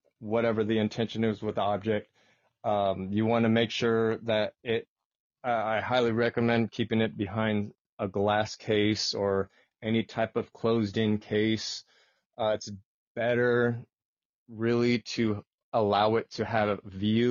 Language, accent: English, American